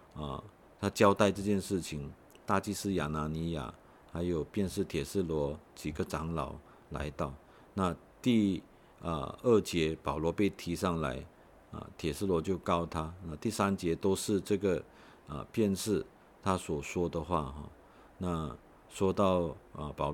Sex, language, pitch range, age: male, Chinese, 75-95 Hz, 50-69